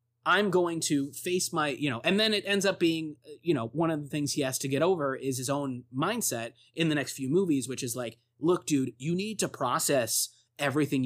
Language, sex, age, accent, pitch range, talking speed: English, male, 20-39, American, 125-160 Hz, 235 wpm